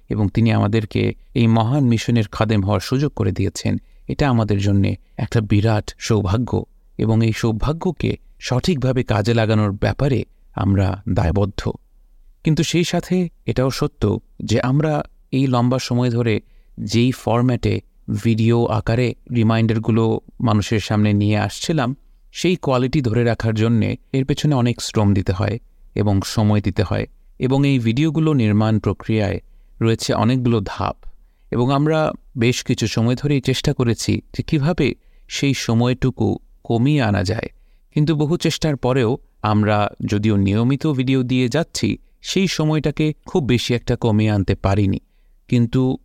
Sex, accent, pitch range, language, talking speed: male, native, 110-135 Hz, Bengali, 135 wpm